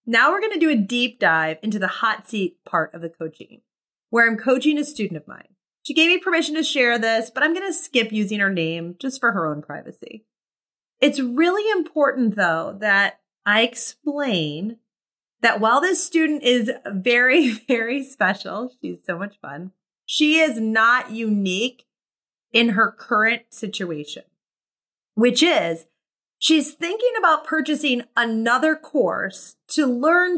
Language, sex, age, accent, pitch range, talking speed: English, female, 30-49, American, 200-310 Hz, 160 wpm